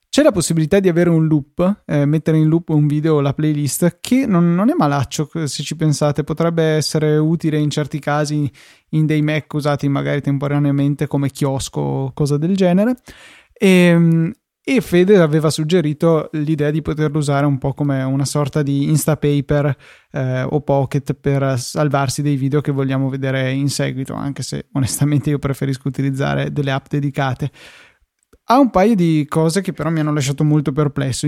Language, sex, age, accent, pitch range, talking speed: Italian, male, 20-39, native, 140-160 Hz, 175 wpm